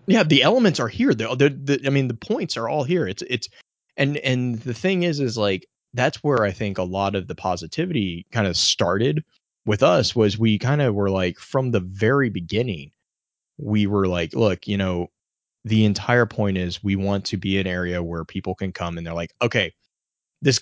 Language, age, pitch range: English, 20-39, 95-125 Hz